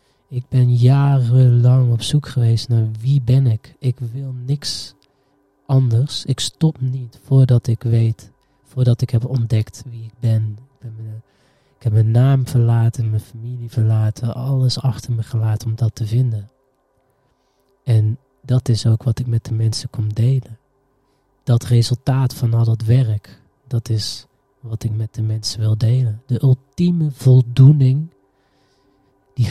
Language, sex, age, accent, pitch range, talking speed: Dutch, male, 20-39, Dutch, 110-135 Hz, 150 wpm